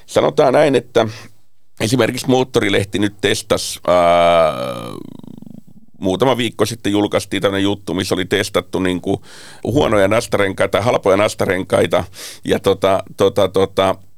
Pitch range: 95-120 Hz